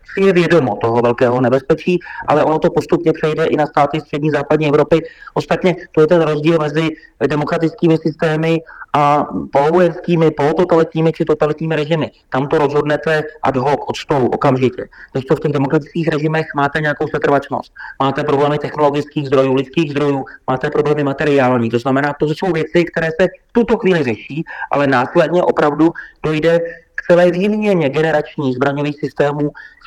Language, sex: Czech, male